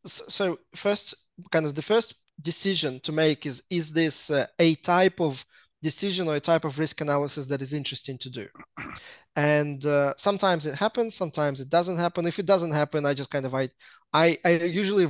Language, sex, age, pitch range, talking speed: English, male, 20-39, 145-170 Hz, 195 wpm